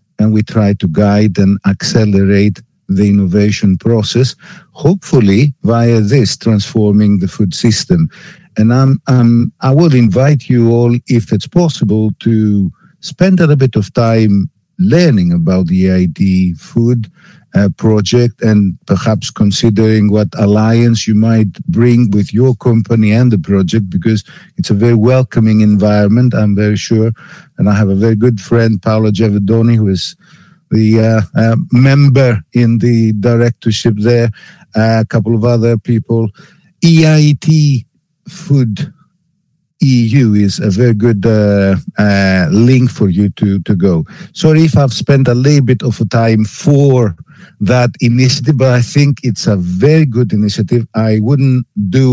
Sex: male